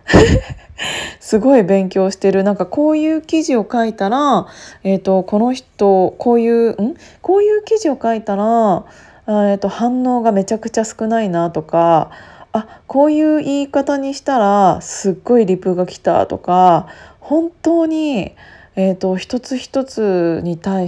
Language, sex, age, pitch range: Japanese, female, 20-39, 180-235 Hz